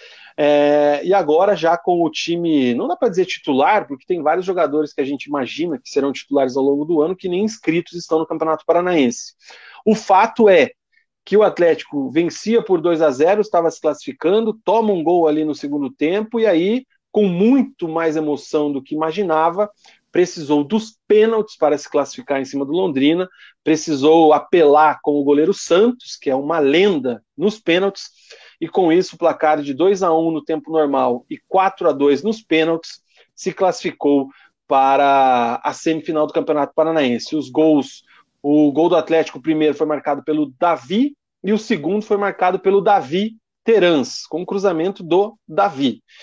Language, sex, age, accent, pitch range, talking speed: Portuguese, male, 40-59, Brazilian, 145-205 Hz, 170 wpm